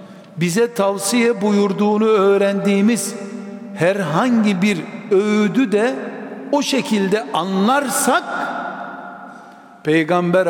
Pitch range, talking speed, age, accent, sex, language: 185-235 Hz, 70 wpm, 60-79, native, male, Turkish